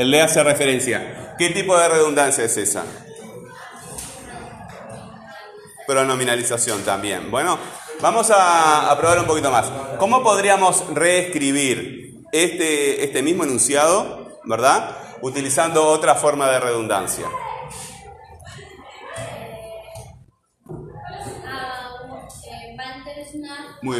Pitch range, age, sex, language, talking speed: 115-175 Hz, 20-39, male, Spanish, 80 wpm